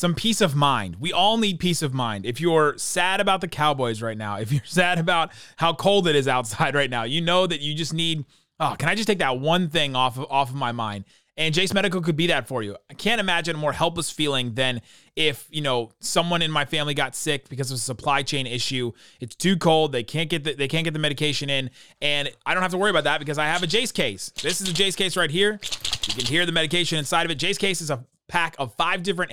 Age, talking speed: 30-49, 265 wpm